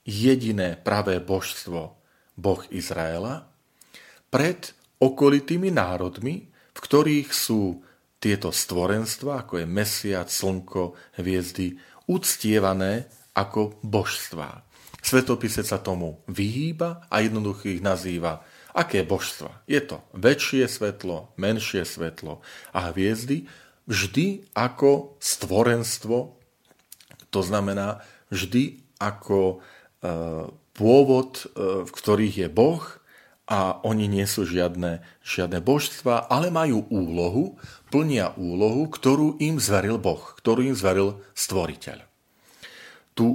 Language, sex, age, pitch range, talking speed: Slovak, male, 40-59, 95-130 Hz, 100 wpm